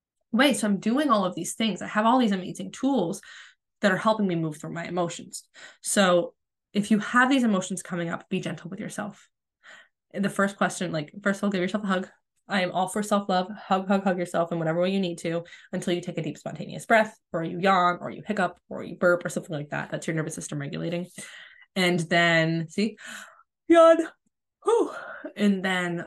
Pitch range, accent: 175-215 Hz, American